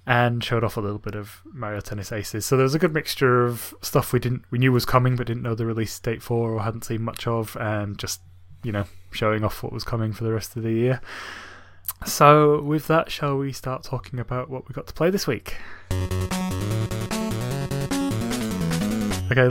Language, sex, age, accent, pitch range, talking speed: English, male, 20-39, British, 105-125 Hz, 205 wpm